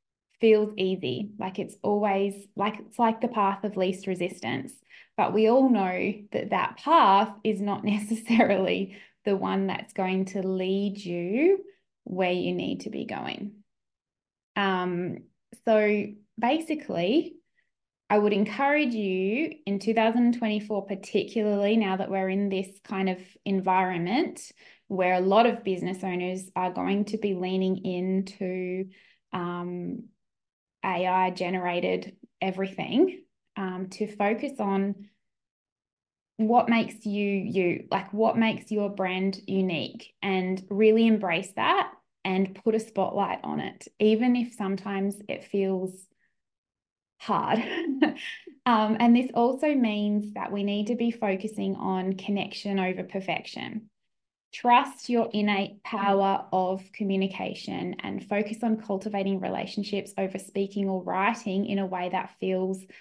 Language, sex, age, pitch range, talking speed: English, female, 20-39, 190-220 Hz, 130 wpm